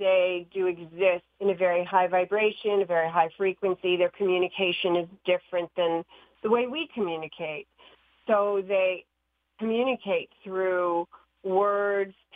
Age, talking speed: 40-59, 125 wpm